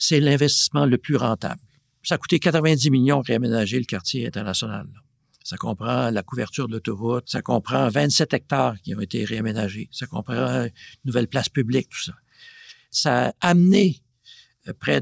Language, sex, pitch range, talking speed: French, male, 125-165 Hz, 160 wpm